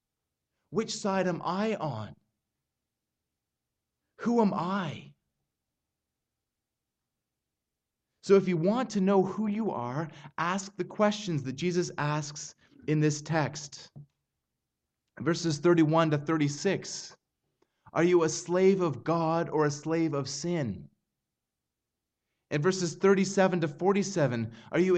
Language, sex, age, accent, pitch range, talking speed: English, male, 30-49, American, 145-175 Hz, 115 wpm